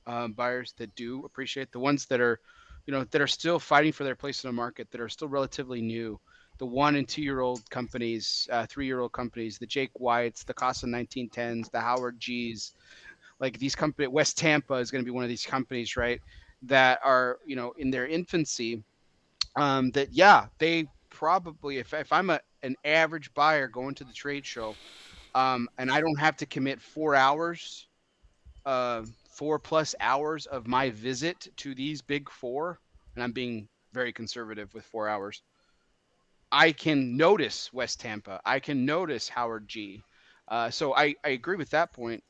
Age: 30-49